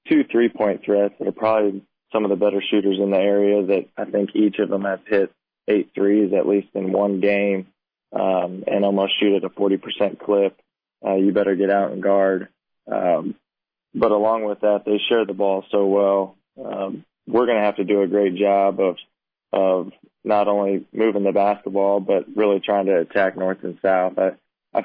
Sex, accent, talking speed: male, American, 200 wpm